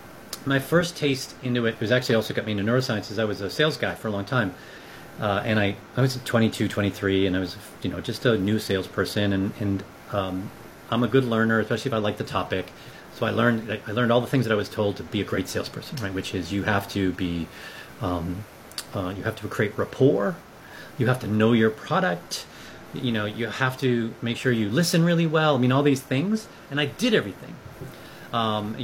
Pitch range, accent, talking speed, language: 105-150 Hz, American, 225 wpm, English